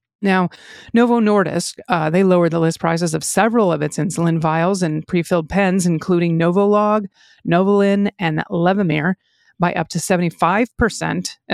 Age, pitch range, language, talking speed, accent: 40-59, 170-200 Hz, English, 140 wpm, American